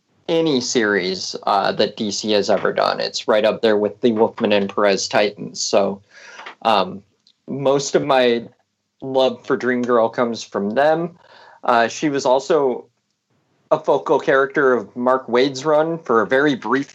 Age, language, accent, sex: 30-49, English, American, male